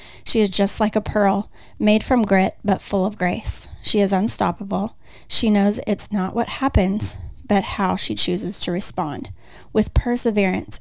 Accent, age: American, 30-49